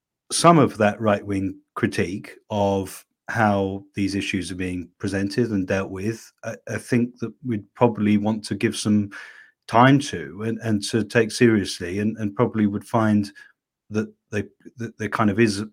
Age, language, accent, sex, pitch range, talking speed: 40-59, English, British, male, 100-115 Hz, 165 wpm